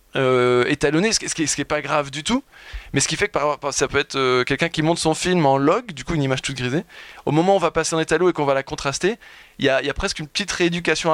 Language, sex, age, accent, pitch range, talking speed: French, male, 20-39, French, 135-165 Hz, 290 wpm